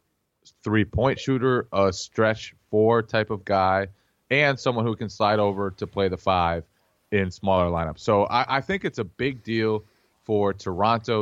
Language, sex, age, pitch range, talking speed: English, male, 20-39, 95-115 Hz, 165 wpm